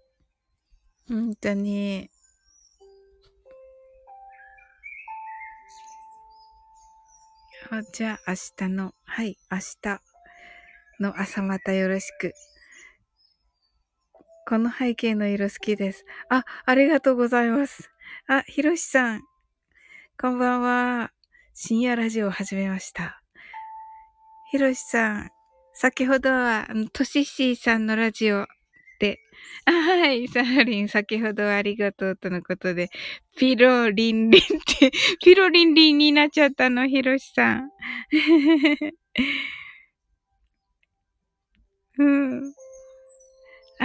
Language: Japanese